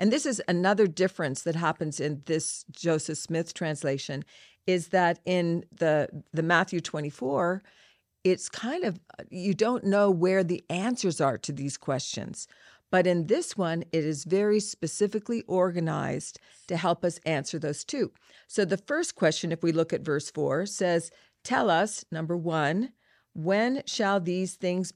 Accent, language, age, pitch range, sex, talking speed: American, English, 50-69, 155-185 Hz, female, 160 wpm